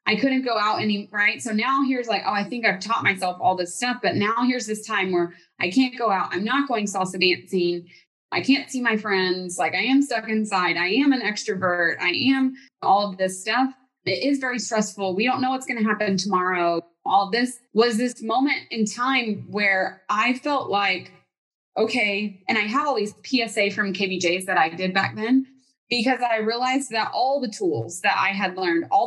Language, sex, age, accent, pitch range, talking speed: English, female, 20-39, American, 190-255 Hz, 215 wpm